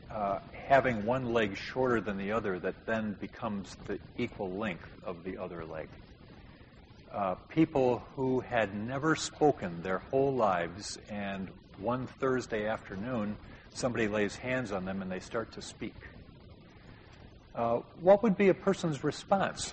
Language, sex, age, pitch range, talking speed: English, male, 50-69, 100-145 Hz, 145 wpm